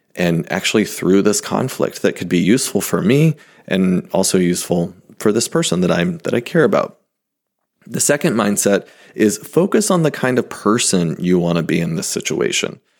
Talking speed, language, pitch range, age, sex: 190 wpm, English, 95-120 Hz, 30-49, male